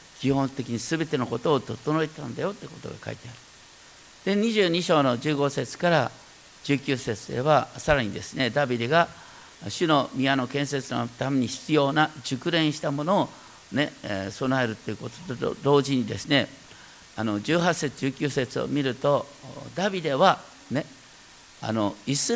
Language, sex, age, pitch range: Japanese, male, 50-69, 130-180 Hz